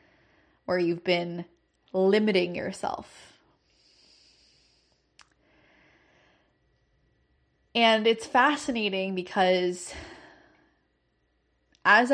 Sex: female